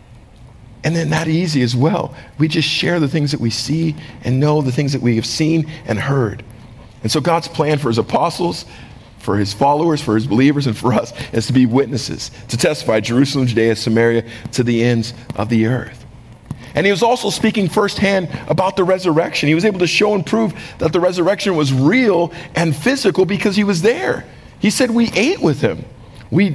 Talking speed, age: 200 wpm, 50-69